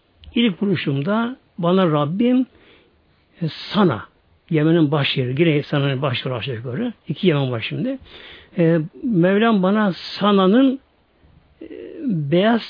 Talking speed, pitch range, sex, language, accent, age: 95 wpm, 150-225 Hz, male, Turkish, native, 60-79